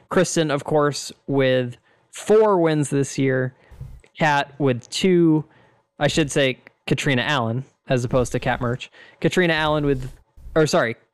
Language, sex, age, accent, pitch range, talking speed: English, male, 20-39, American, 125-165 Hz, 140 wpm